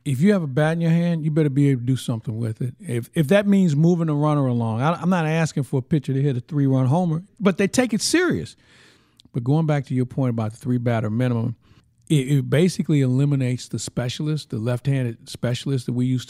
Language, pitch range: English, 120-150 Hz